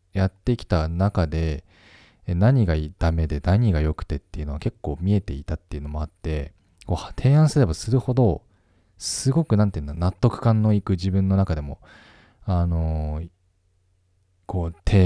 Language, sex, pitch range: Japanese, male, 80-100 Hz